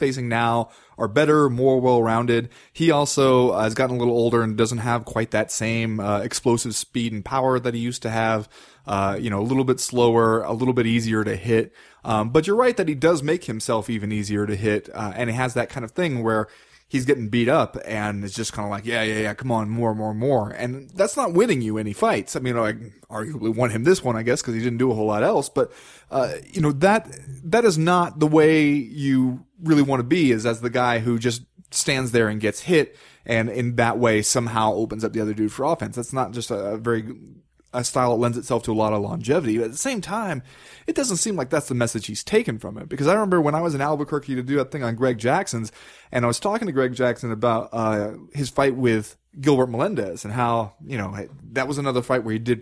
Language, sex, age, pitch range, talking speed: English, male, 20-39, 115-140 Hz, 245 wpm